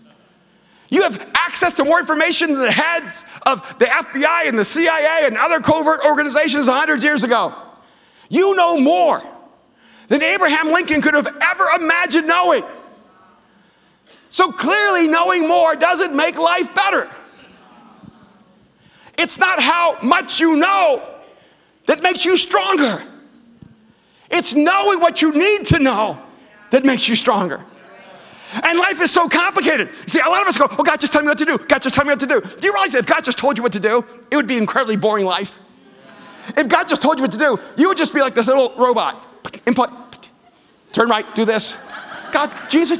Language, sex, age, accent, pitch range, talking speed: English, male, 40-59, American, 260-340 Hz, 180 wpm